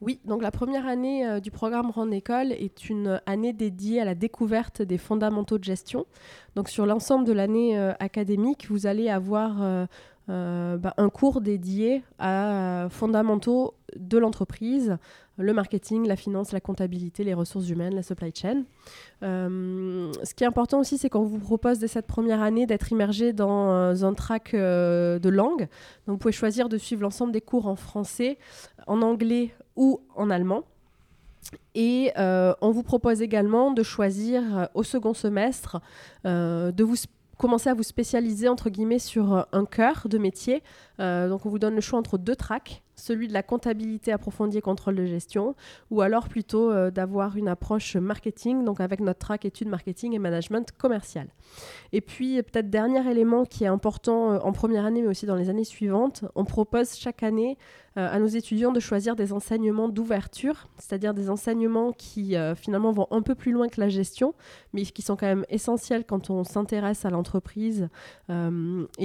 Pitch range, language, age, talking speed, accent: 195-230 Hz, French, 20-39, 185 wpm, French